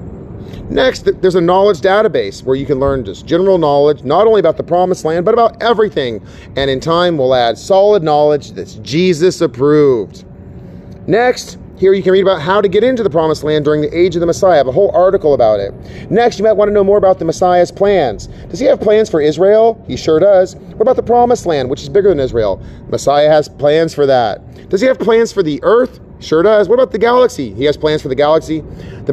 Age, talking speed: 40-59, 230 wpm